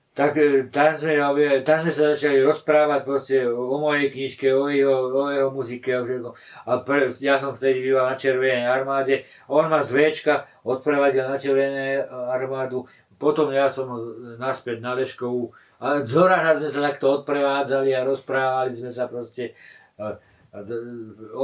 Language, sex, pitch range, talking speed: Slovak, male, 125-145 Hz, 145 wpm